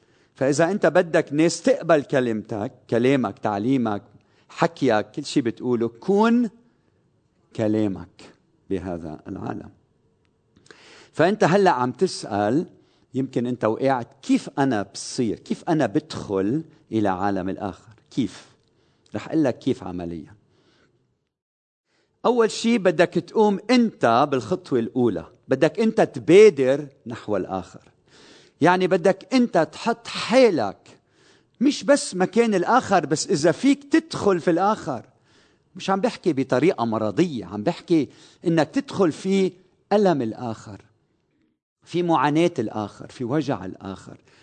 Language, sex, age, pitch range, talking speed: Arabic, male, 50-69, 115-185 Hz, 110 wpm